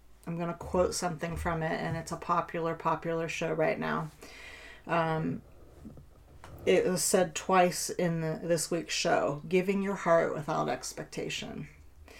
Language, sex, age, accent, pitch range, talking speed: English, female, 40-59, American, 150-170 Hz, 150 wpm